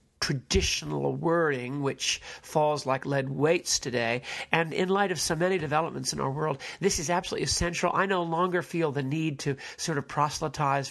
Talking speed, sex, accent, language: 175 wpm, male, American, English